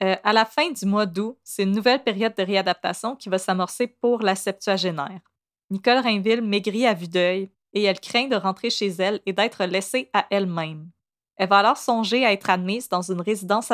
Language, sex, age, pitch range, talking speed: French, female, 20-39, 185-220 Hz, 205 wpm